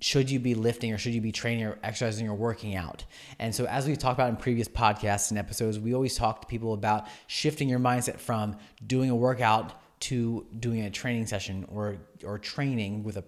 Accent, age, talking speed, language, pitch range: American, 30-49, 215 wpm, English, 110-135 Hz